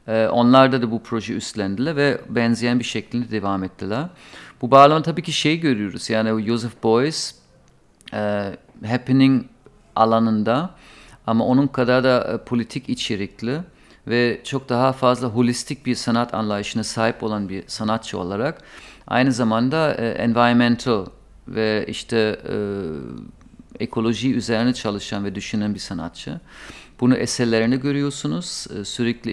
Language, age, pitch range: Turkish, 50-69, 110-125 Hz